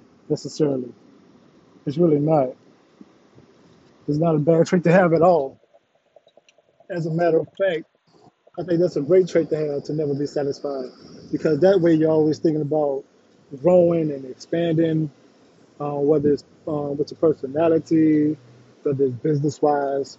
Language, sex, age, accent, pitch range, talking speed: English, male, 20-39, American, 140-165 Hz, 145 wpm